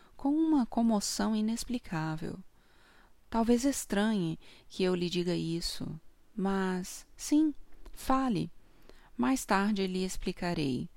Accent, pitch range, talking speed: Brazilian, 180-230 Hz, 100 wpm